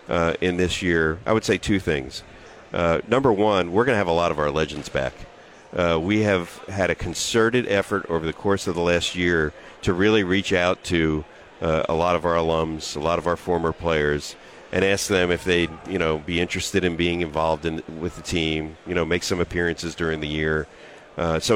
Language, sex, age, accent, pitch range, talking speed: English, male, 40-59, American, 80-95 Hz, 220 wpm